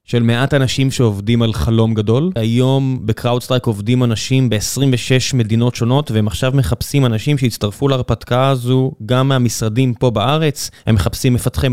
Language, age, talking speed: Hebrew, 20-39, 145 wpm